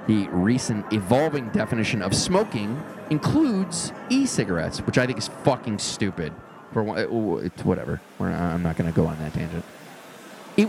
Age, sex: 30-49, male